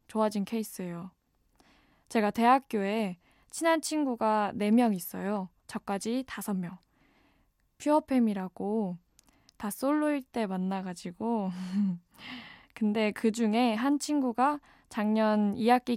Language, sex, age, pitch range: Korean, female, 20-39, 200-250 Hz